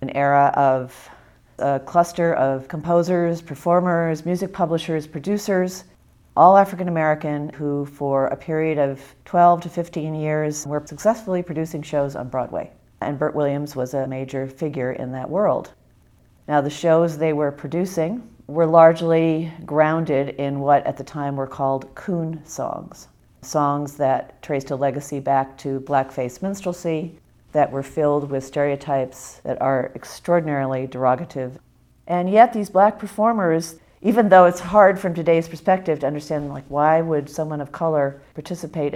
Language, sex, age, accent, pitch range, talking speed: English, female, 40-59, American, 140-170 Hz, 145 wpm